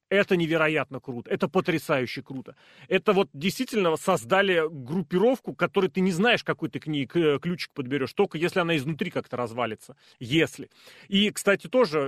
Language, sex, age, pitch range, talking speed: Russian, male, 30-49, 145-195 Hz, 155 wpm